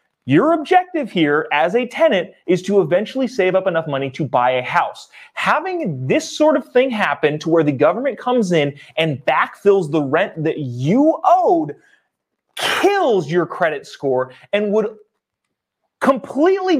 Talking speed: 155 wpm